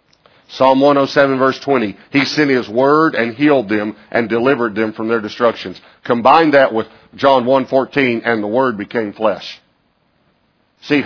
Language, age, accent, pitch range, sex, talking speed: English, 50-69, American, 120-160 Hz, male, 155 wpm